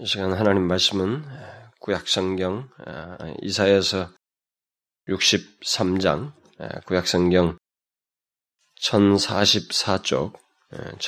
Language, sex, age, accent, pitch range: Korean, male, 20-39, native, 90-100 Hz